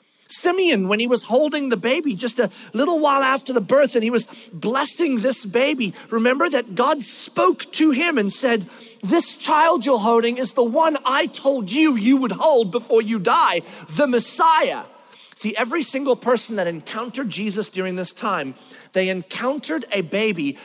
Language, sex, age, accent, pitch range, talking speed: English, male, 40-59, American, 205-270 Hz, 175 wpm